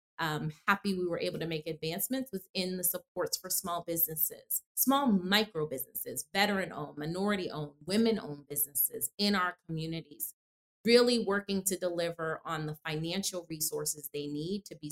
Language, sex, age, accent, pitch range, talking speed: English, female, 30-49, American, 160-190 Hz, 140 wpm